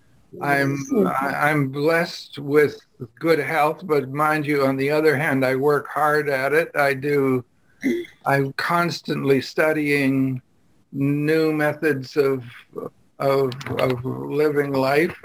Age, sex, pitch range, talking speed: 60-79, male, 135-155 Hz, 120 wpm